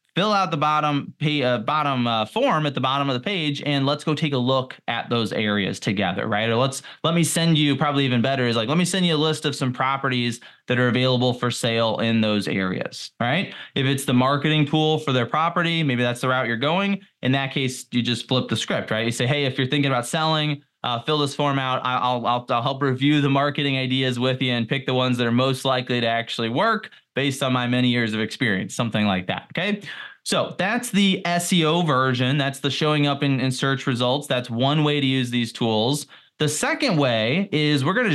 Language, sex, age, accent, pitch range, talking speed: English, male, 20-39, American, 125-155 Hz, 235 wpm